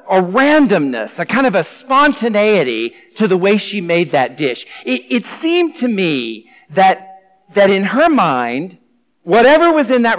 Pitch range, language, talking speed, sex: 170-245 Hz, English, 165 wpm, male